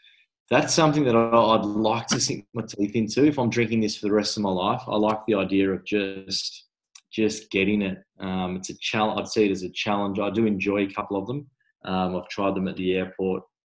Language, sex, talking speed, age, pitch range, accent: English, male, 235 wpm, 20-39, 95-105 Hz, Australian